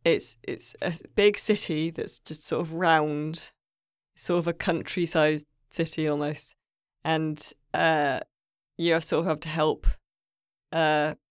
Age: 10-29